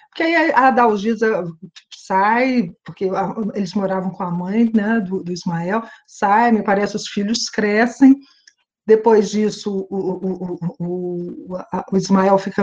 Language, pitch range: Portuguese, 190-240 Hz